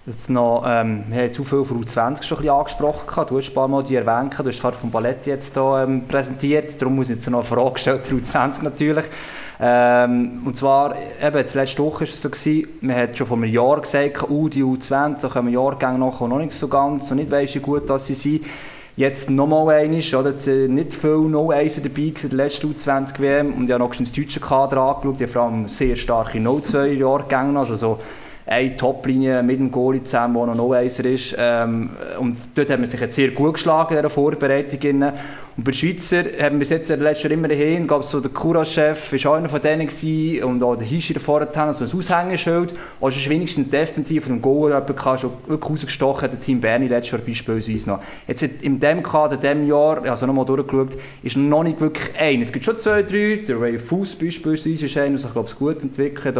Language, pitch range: German, 125-150 Hz